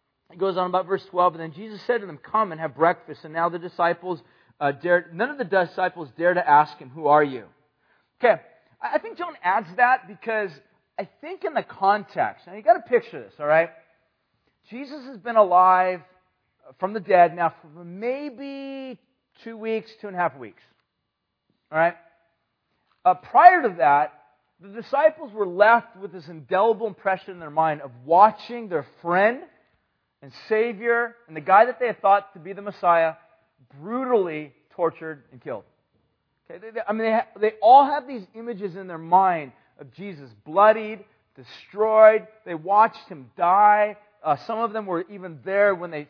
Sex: male